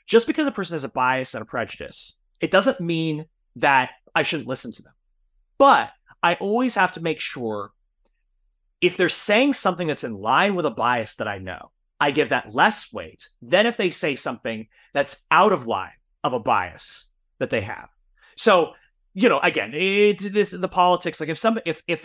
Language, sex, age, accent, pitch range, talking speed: English, male, 30-49, American, 125-190 Hz, 200 wpm